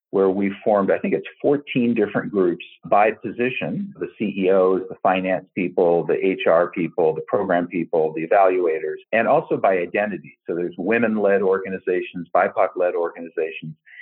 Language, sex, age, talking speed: English, male, 50-69, 145 wpm